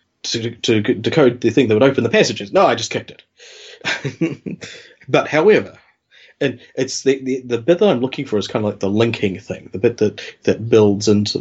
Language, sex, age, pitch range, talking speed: English, male, 30-49, 105-135 Hz, 210 wpm